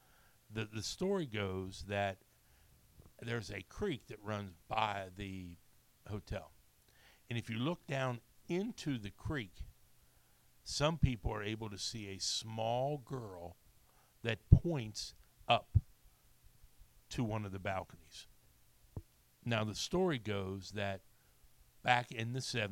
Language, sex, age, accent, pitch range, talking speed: English, male, 60-79, American, 95-125 Hz, 120 wpm